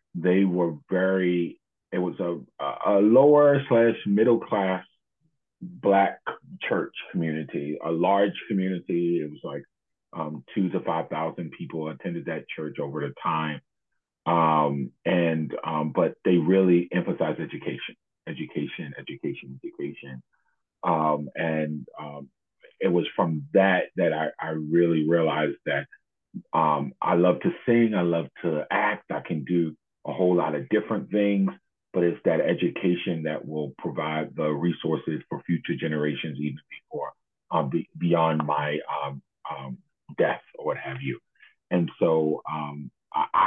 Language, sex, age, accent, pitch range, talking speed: English, male, 40-59, American, 75-95 Hz, 140 wpm